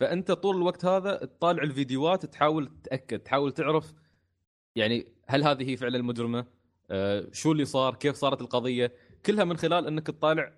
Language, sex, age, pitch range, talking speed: Arabic, male, 20-39, 110-150 Hz, 155 wpm